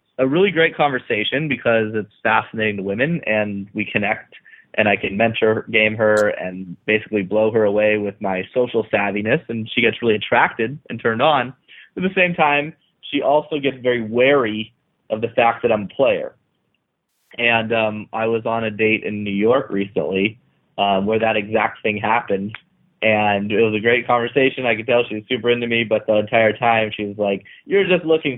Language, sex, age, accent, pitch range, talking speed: English, male, 20-39, American, 105-125 Hz, 195 wpm